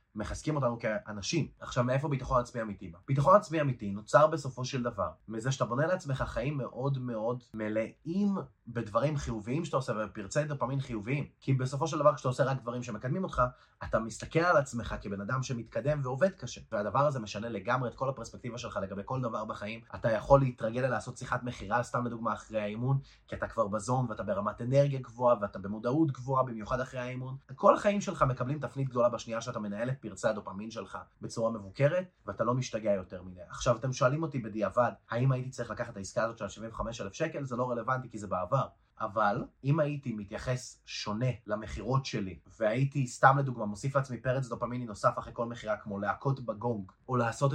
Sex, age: male, 20-39